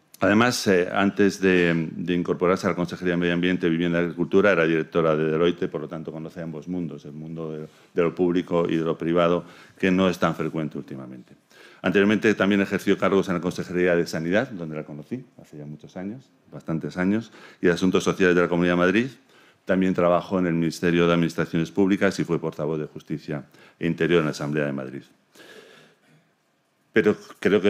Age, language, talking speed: 40-59, Spanish, 195 wpm